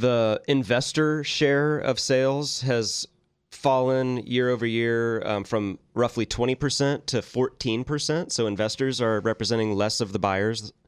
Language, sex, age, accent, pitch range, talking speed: English, male, 30-49, American, 105-125 Hz, 130 wpm